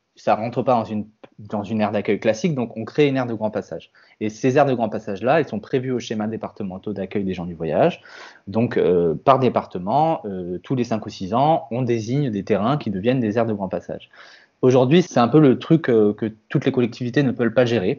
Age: 20-39